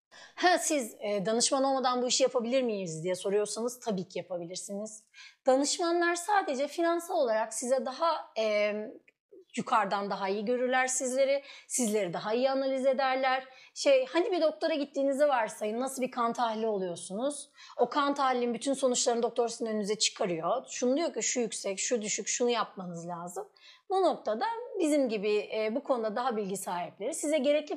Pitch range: 220-280 Hz